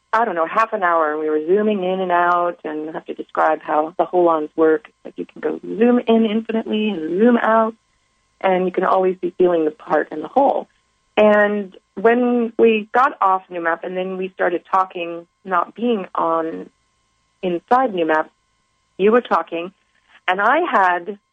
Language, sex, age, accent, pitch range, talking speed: English, female, 40-59, American, 170-225 Hz, 190 wpm